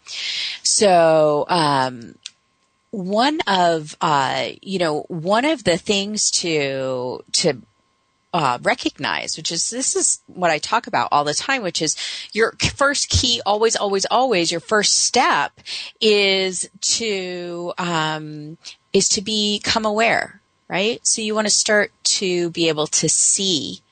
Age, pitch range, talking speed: 30-49, 145-210 Hz, 140 wpm